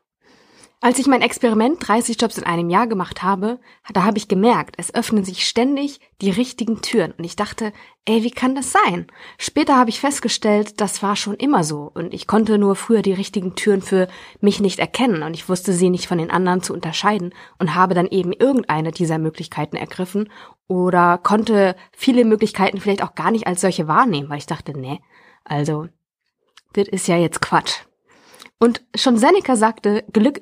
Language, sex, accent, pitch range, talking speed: German, female, German, 180-230 Hz, 185 wpm